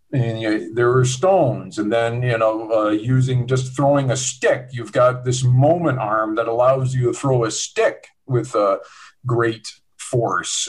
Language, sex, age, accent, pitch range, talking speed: English, male, 50-69, American, 120-150 Hz, 185 wpm